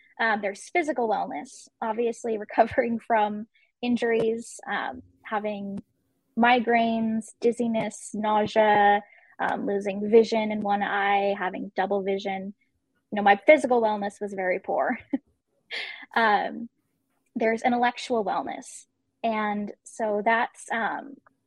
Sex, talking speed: female, 105 wpm